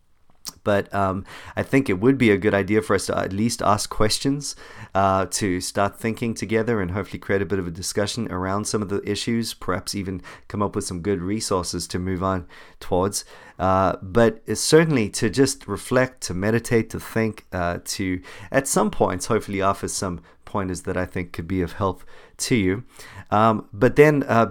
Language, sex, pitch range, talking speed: English, male, 90-115 Hz, 195 wpm